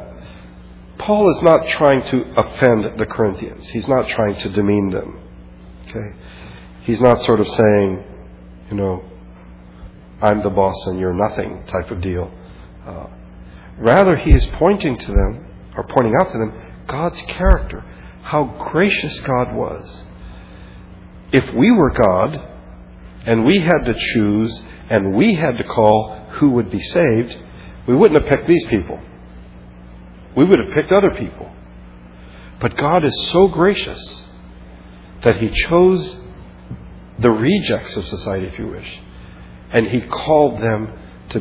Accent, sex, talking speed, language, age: American, male, 145 wpm, English, 50-69